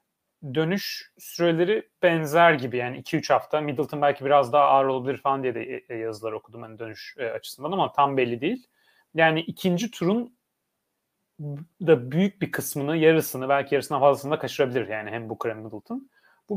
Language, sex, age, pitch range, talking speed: Turkish, male, 30-49, 140-190 Hz, 160 wpm